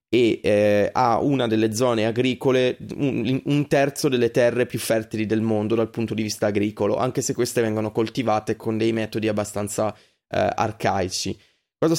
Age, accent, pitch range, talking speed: 20-39, native, 110-130 Hz, 165 wpm